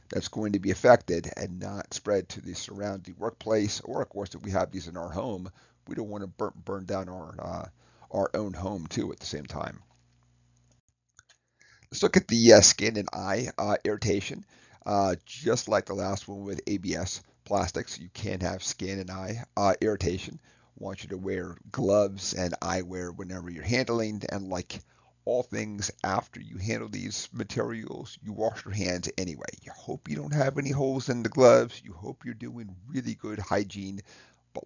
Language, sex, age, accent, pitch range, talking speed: English, male, 40-59, American, 90-110 Hz, 190 wpm